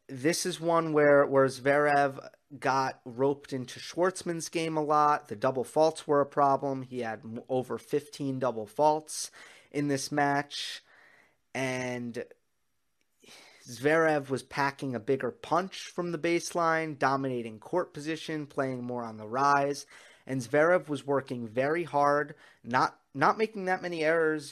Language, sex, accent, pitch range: English, male, American, 125-150 Hz